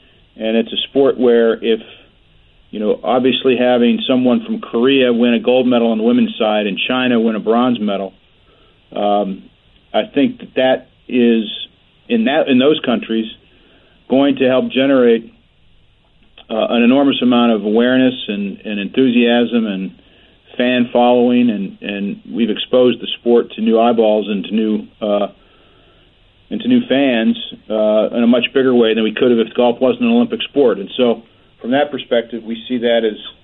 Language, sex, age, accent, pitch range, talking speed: English, male, 50-69, American, 110-130 Hz, 170 wpm